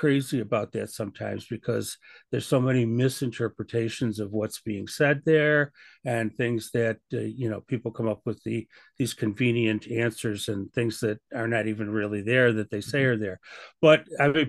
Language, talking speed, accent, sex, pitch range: English, 180 wpm, American, male, 110-140 Hz